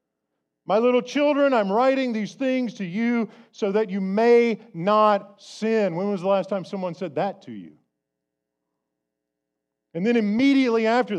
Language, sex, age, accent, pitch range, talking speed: English, male, 50-69, American, 160-245 Hz, 155 wpm